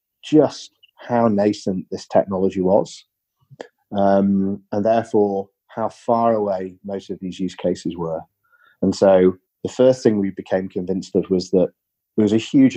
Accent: British